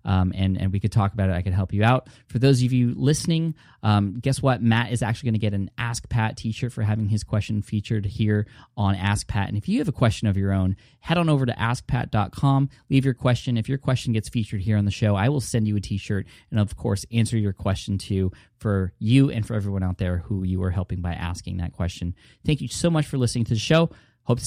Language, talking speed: English, 255 wpm